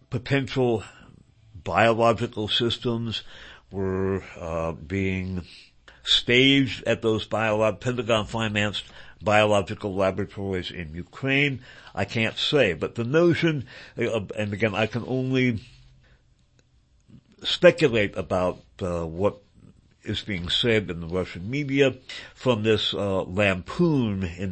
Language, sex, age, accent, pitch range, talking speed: English, male, 60-79, American, 95-125 Hz, 105 wpm